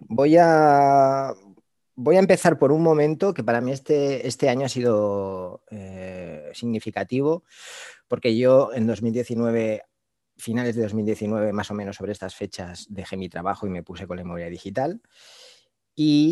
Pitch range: 95-125 Hz